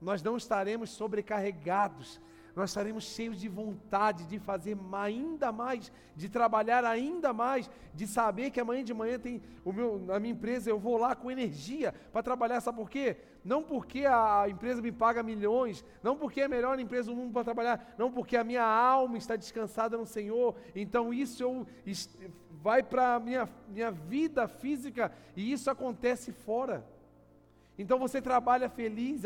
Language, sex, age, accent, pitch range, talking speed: Portuguese, male, 40-59, Brazilian, 195-240 Hz, 165 wpm